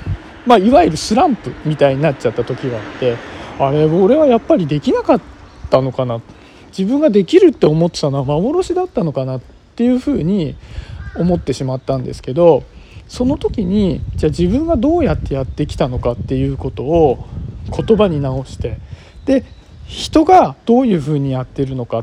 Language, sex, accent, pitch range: Japanese, male, native, 135-215 Hz